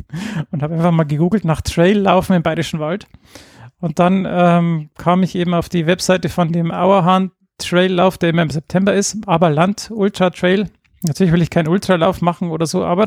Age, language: 40-59, German